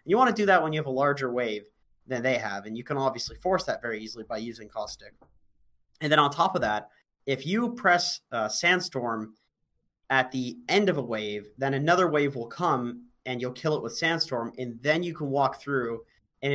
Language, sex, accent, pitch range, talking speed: English, male, American, 115-160 Hz, 220 wpm